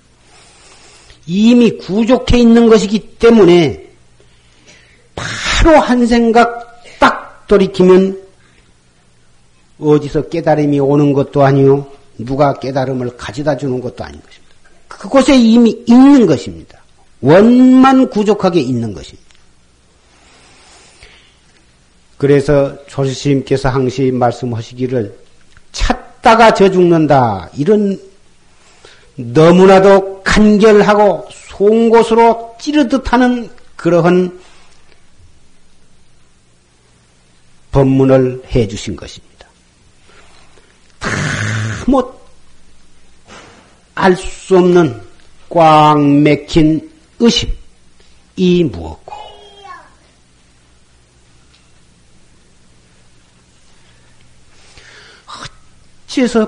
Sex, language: male, Korean